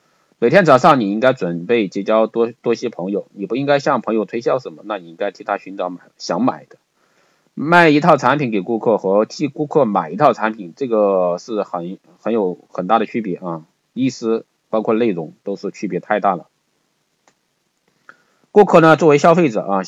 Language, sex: Chinese, male